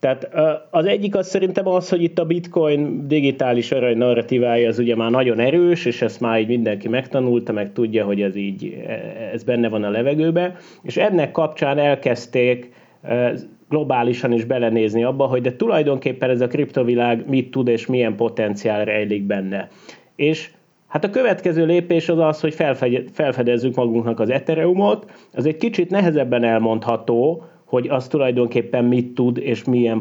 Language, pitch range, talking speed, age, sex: Hungarian, 115-170 Hz, 160 wpm, 30-49, male